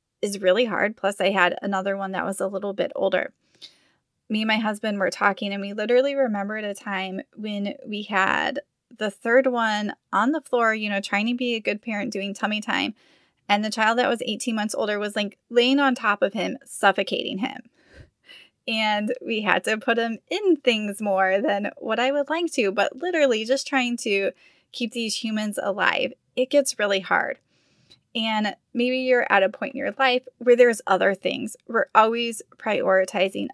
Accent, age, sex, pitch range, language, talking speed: American, 20-39, female, 200-250 Hz, English, 190 wpm